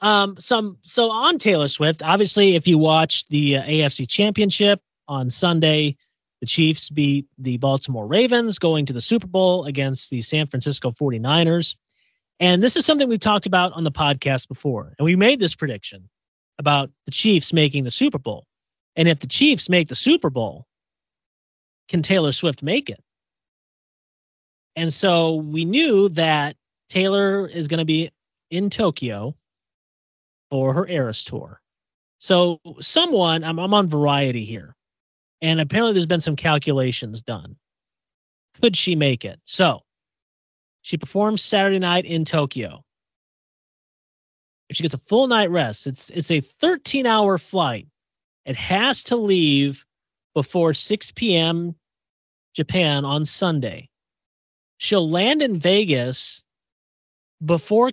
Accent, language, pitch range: American, English, 135-190 Hz